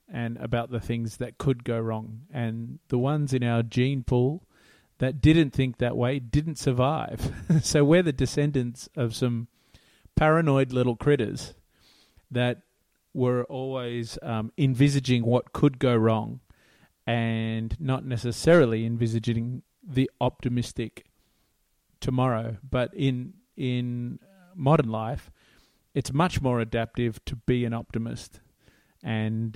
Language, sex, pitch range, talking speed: English, male, 115-135 Hz, 125 wpm